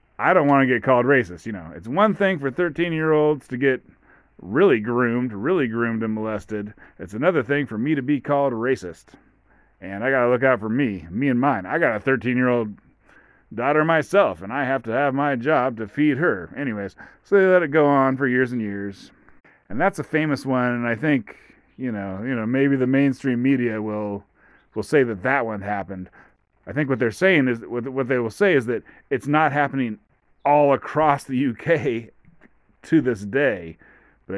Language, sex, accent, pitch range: English, male, American, 110-145 Hz